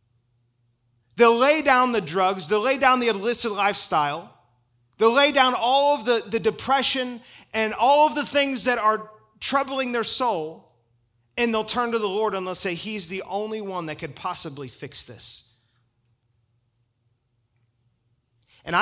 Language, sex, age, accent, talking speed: English, male, 30-49, American, 155 wpm